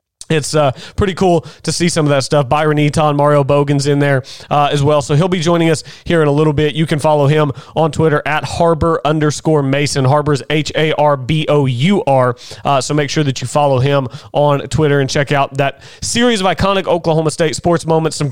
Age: 30-49